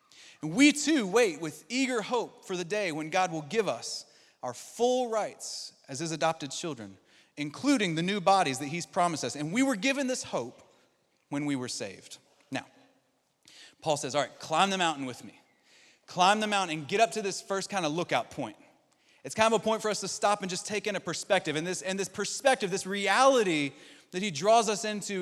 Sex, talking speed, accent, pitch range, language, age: male, 215 wpm, American, 175-245 Hz, English, 30-49